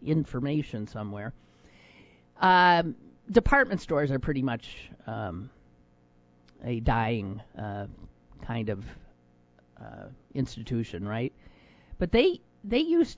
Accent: American